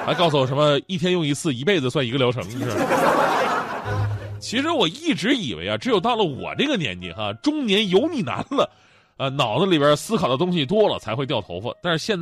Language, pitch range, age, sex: Chinese, 120-180 Hz, 20-39, male